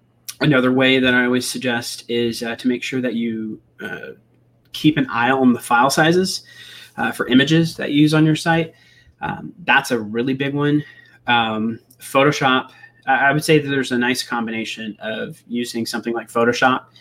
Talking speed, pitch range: 180 wpm, 115-130 Hz